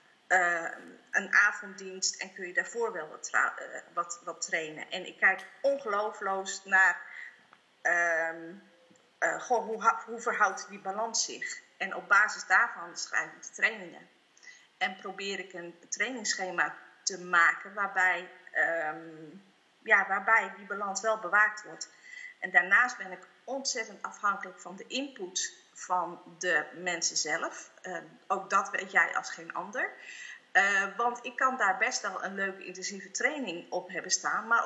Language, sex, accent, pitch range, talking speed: Dutch, female, Dutch, 185-235 Hz, 150 wpm